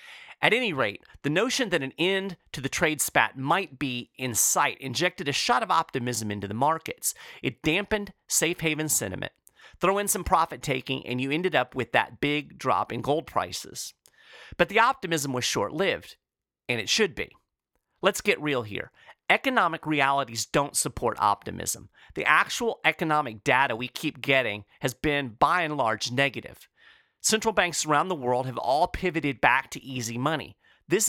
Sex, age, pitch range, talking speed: male, 40-59, 125-175 Hz, 175 wpm